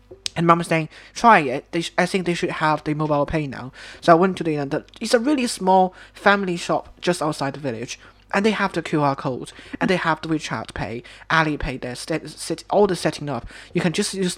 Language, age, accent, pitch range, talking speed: English, 30-49, British, 140-185 Hz, 240 wpm